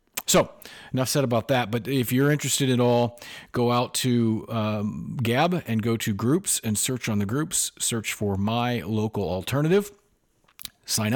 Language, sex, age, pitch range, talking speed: English, male, 40-59, 110-130 Hz, 165 wpm